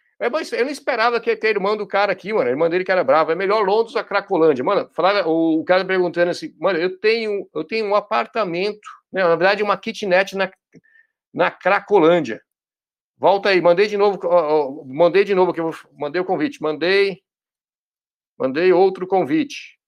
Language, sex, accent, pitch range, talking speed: Portuguese, male, Brazilian, 170-210 Hz, 185 wpm